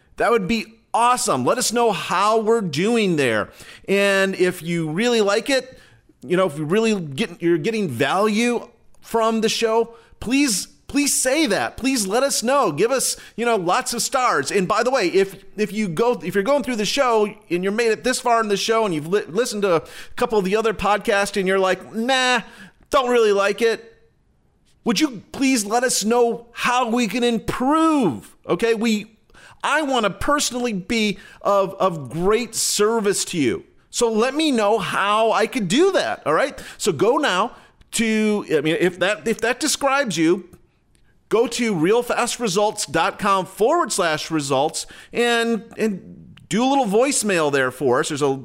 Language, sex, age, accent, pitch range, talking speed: English, male, 40-59, American, 185-240 Hz, 185 wpm